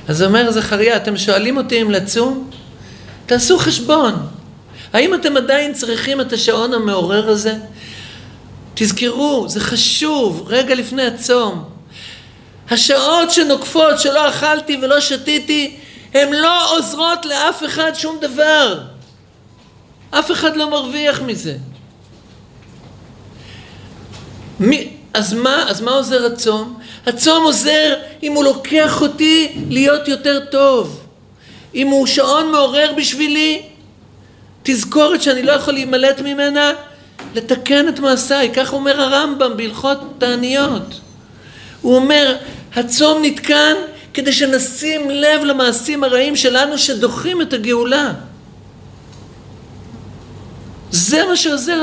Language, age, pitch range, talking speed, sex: Hebrew, 50-69, 230-295 Hz, 110 wpm, male